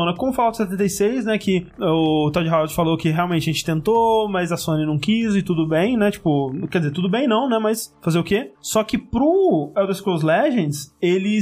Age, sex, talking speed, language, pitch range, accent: 20-39, male, 220 wpm, Portuguese, 170-215 Hz, Brazilian